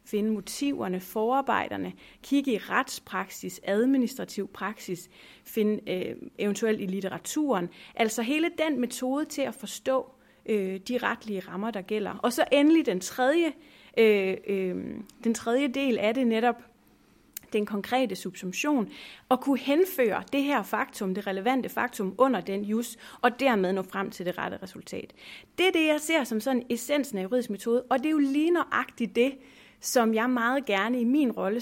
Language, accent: Danish, native